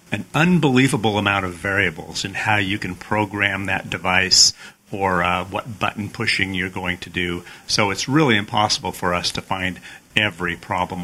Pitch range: 90-105 Hz